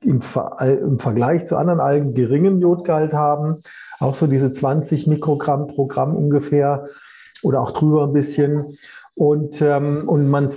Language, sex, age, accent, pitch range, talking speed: German, male, 50-69, German, 140-170 Hz, 150 wpm